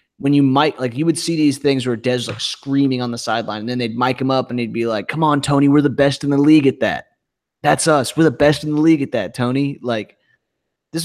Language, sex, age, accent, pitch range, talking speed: English, male, 20-39, American, 115-135 Hz, 270 wpm